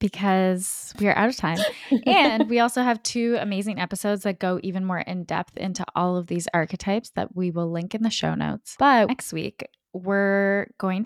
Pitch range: 175-200 Hz